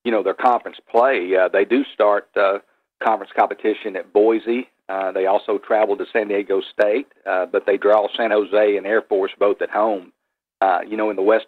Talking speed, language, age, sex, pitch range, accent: 210 wpm, English, 50-69, male, 100-115 Hz, American